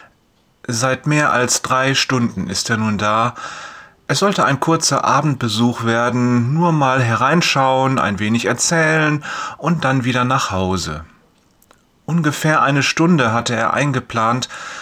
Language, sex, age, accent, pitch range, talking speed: German, male, 30-49, German, 120-150 Hz, 130 wpm